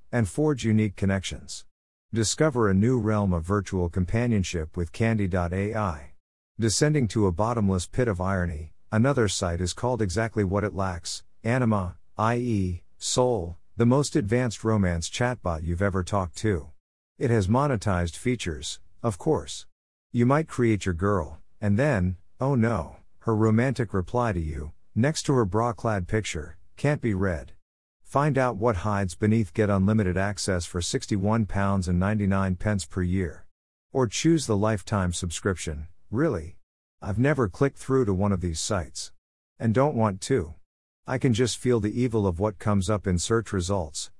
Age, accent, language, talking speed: 50-69, American, English, 150 wpm